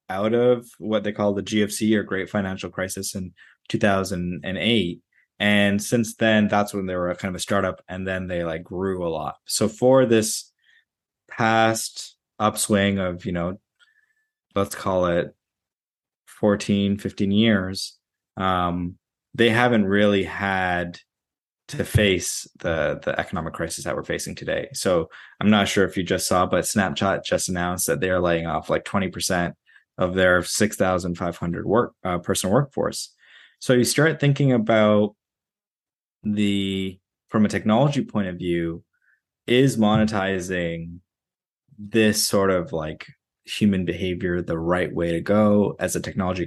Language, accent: English, American